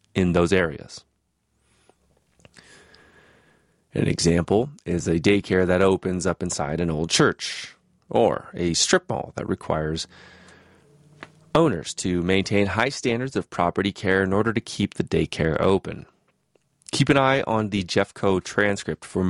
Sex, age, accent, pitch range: male, 30-49, American, 90-110 Hz